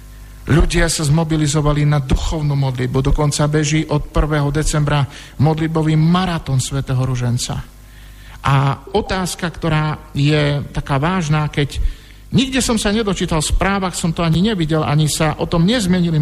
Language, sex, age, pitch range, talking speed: Slovak, male, 50-69, 135-165 Hz, 135 wpm